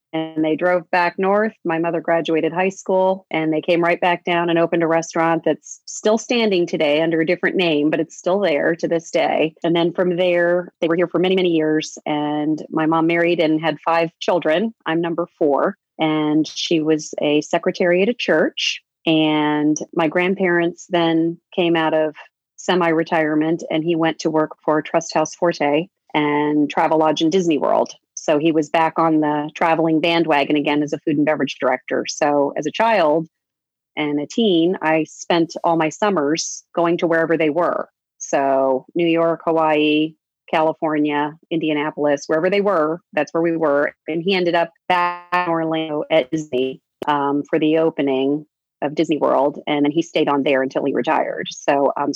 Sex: female